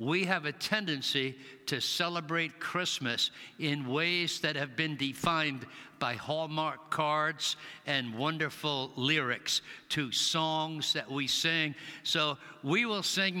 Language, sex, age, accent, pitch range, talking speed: English, male, 60-79, American, 145-170 Hz, 125 wpm